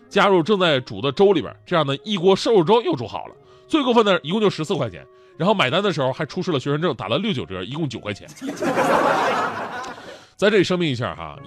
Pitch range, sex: 140-210 Hz, male